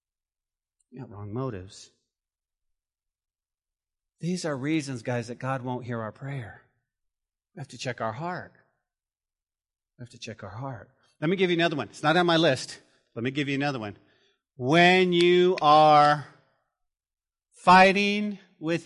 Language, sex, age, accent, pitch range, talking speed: English, male, 40-59, American, 110-155 Hz, 150 wpm